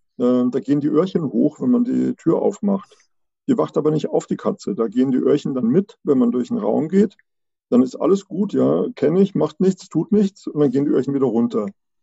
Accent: German